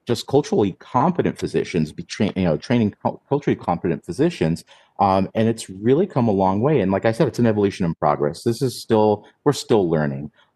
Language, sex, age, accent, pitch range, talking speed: English, male, 30-49, American, 95-115 Hz, 205 wpm